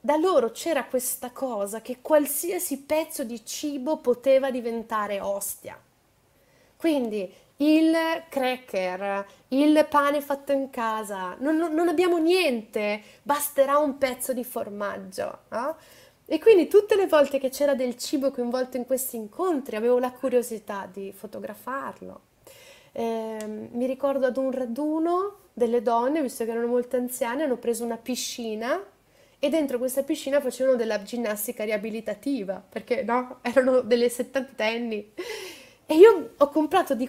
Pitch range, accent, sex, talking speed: 230-295 Hz, native, female, 135 wpm